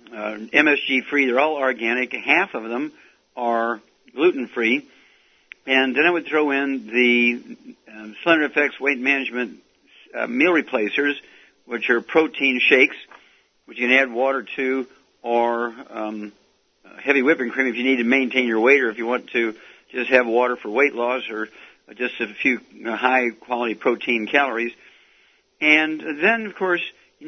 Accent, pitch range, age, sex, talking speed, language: American, 120-145 Hz, 60-79, male, 155 wpm, English